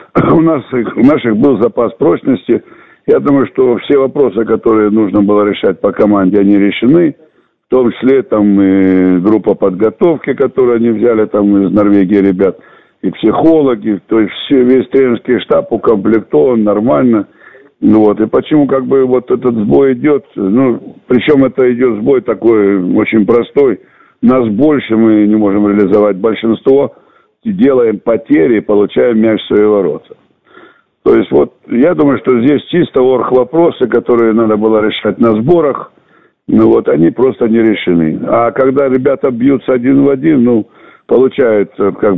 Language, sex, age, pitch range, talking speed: Russian, male, 60-79, 105-125 Hz, 150 wpm